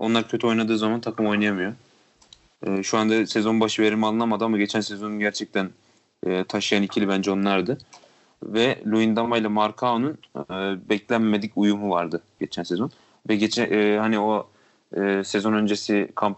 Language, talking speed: Turkish, 150 wpm